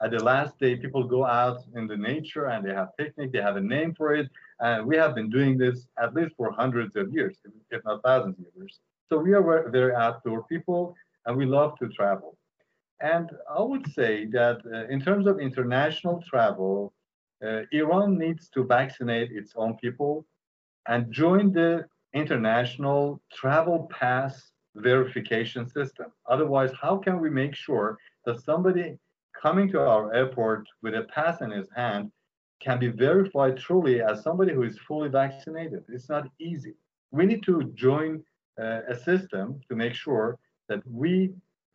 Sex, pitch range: male, 120-160 Hz